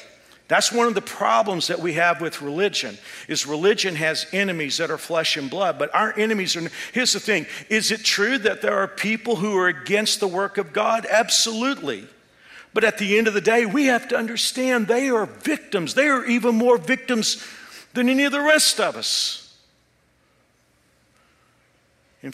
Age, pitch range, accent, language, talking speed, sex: 50-69, 165-225 Hz, American, English, 185 wpm, male